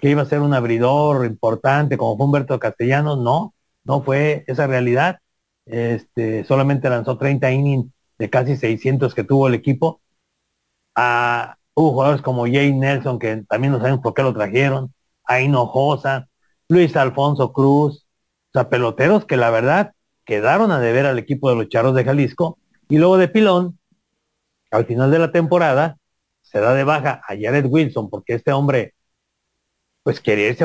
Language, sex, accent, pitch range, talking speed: Spanish, male, Mexican, 125-165 Hz, 165 wpm